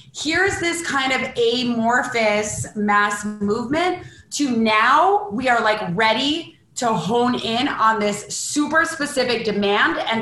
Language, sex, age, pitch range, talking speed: English, female, 30-49, 205-250 Hz, 130 wpm